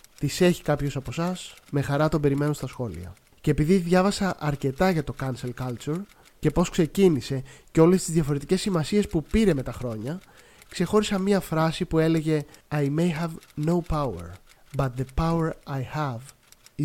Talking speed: 165 wpm